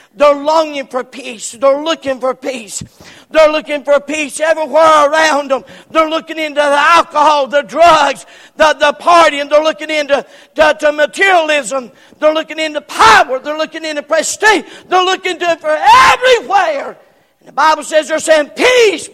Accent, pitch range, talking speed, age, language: American, 260-310 Hz, 150 wpm, 50-69, English